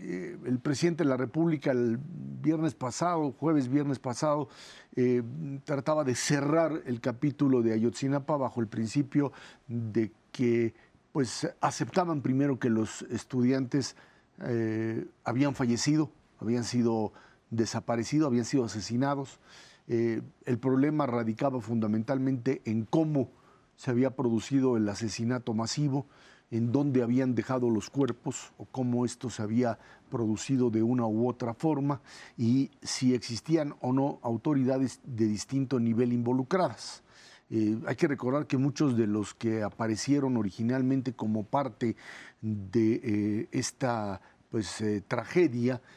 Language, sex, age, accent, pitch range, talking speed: Spanish, male, 50-69, Mexican, 115-140 Hz, 130 wpm